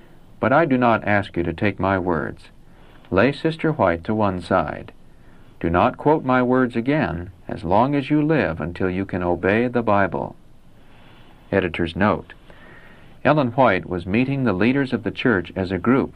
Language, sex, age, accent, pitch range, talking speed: English, male, 60-79, American, 90-125 Hz, 175 wpm